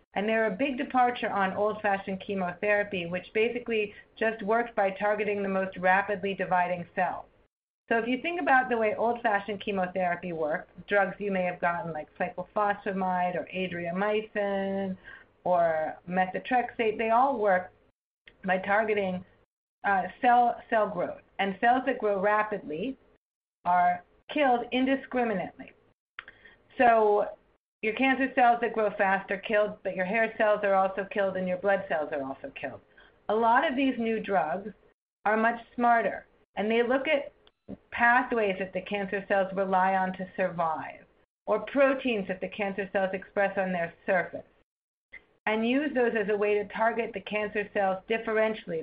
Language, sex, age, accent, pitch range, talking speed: English, female, 40-59, American, 190-230 Hz, 150 wpm